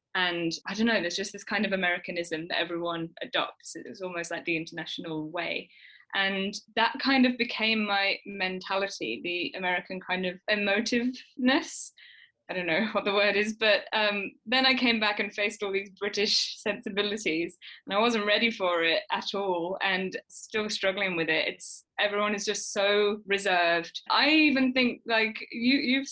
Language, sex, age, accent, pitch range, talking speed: English, female, 20-39, British, 185-230 Hz, 170 wpm